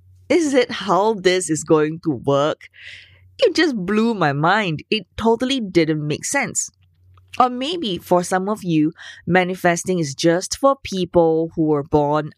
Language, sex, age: English, female, 20-39